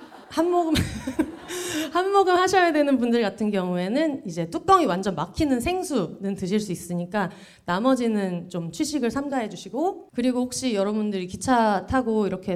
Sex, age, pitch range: female, 30-49, 185-260 Hz